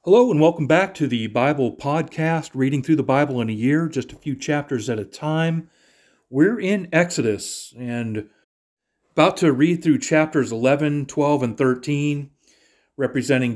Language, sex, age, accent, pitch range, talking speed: English, male, 40-59, American, 120-155 Hz, 160 wpm